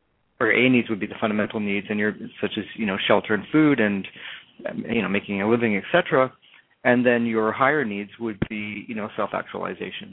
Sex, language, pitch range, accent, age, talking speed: male, English, 105-125 Hz, American, 30-49, 205 wpm